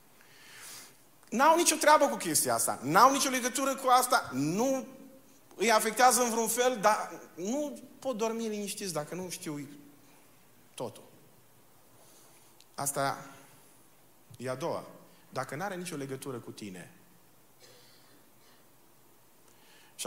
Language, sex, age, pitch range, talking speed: Romanian, male, 40-59, 130-185 Hz, 115 wpm